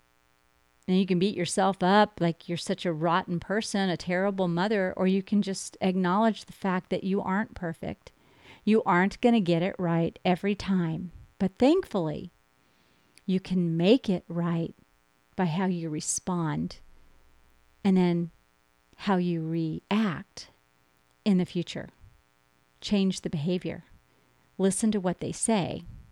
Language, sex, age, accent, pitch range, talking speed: English, female, 40-59, American, 155-195 Hz, 140 wpm